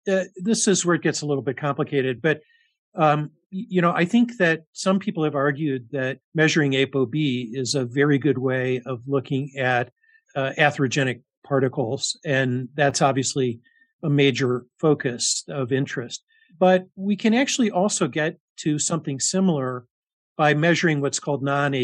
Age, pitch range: 50-69, 135-165 Hz